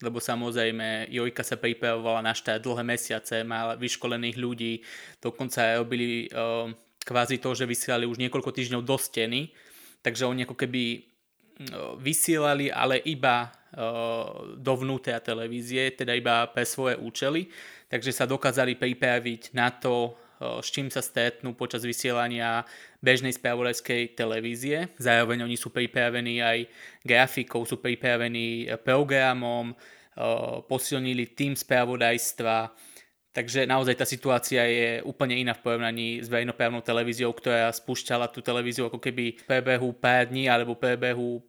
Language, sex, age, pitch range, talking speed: Slovak, male, 20-39, 115-130 Hz, 135 wpm